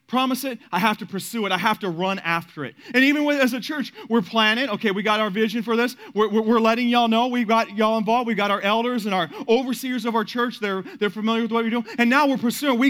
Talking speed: 280 wpm